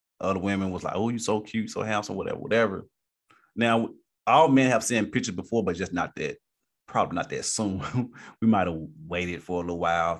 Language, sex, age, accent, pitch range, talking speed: English, male, 30-49, American, 95-115 Hz, 205 wpm